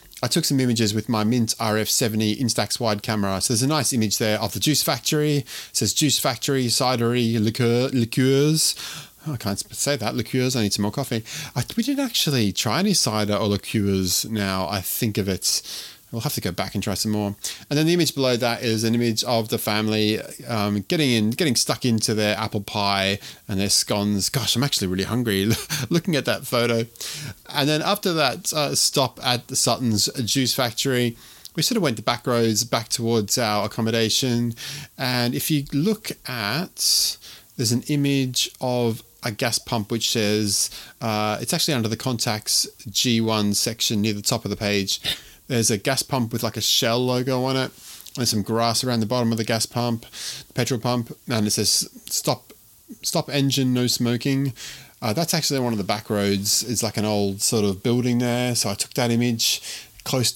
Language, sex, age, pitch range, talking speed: English, male, 30-49, 110-130 Hz, 195 wpm